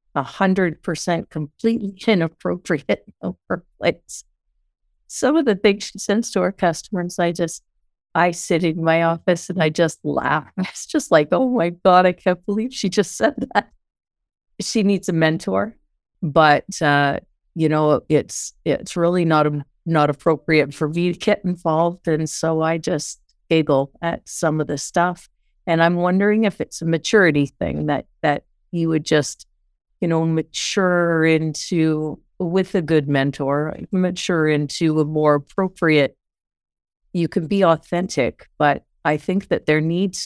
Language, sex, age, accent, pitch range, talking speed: English, female, 50-69, American, 150-180 Hz, 155 wpm